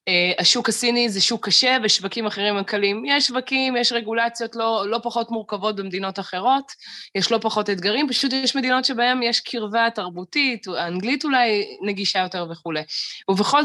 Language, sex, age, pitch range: Hebrew, female, 20-39, 180-230 Hz